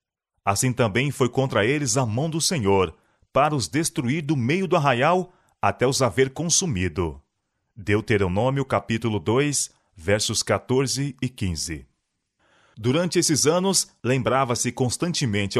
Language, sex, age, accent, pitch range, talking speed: Portuguese, male, 30-49, Brazilian, 105-150 Hz, 125 wpm